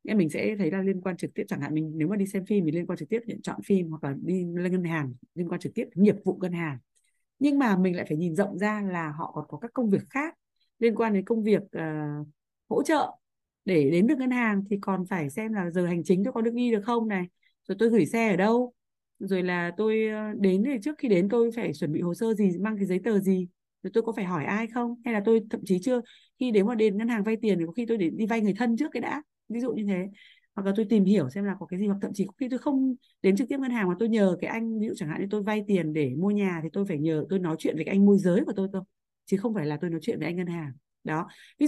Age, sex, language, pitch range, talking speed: 20-39, female, Vietnamese, 175-230 Hz, 300 wpm